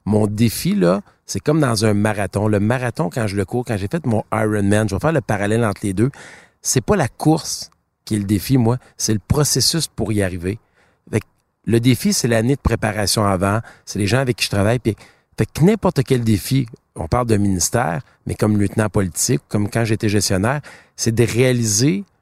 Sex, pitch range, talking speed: male, 105-130 Hz, 215 wpm